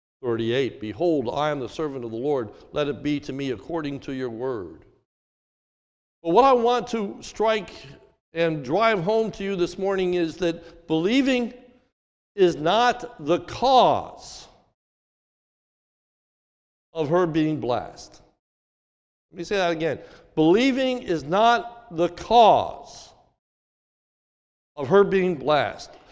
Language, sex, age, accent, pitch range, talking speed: English, male, 60-79, American, 160-245 Hz, 130 wpm